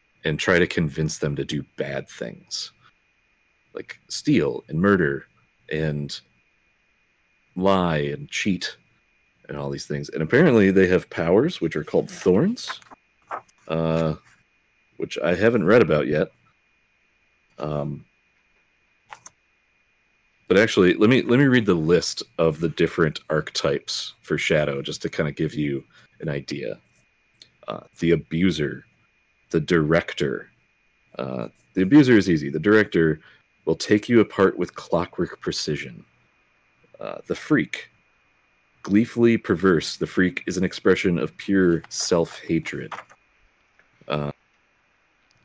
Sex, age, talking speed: male, 40-59, 125 wpm